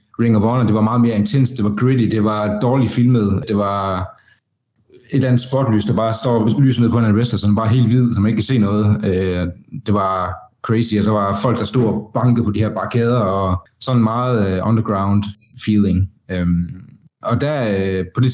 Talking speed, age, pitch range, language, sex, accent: 205 wpm, 30-49, 105-125 Hz, Danish, male, native